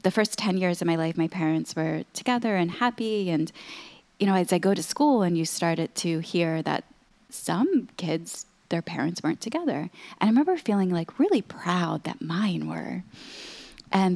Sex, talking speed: female, 185 wpm